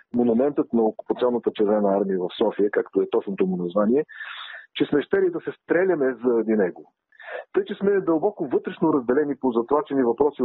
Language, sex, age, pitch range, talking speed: Bulgarian, male, 40-59, 140-210 Hz, 165 wpm